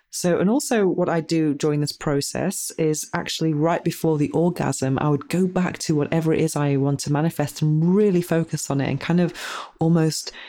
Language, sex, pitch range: English, female, 140-160 Hz